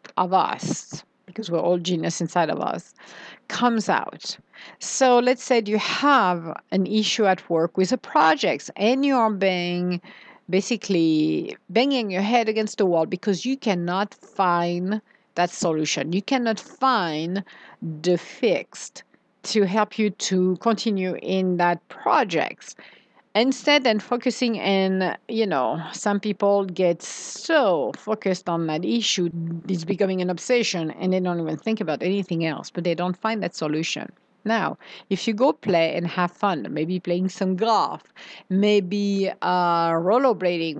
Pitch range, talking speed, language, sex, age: 175-220 Hz, 145 wpm, English, female, 50-69